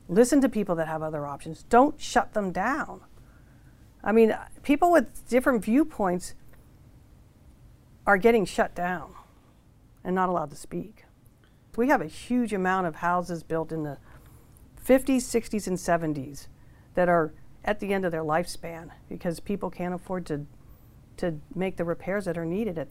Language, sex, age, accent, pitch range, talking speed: English, female, 50-69, American, 160-215 Hz, 160 wpm